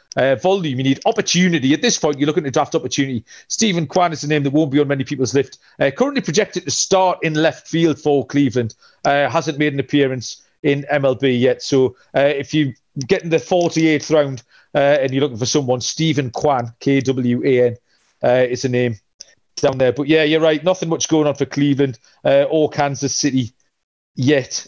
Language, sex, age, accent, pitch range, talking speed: English, male, 40-59, British, 135-170 Hz, 200 wpm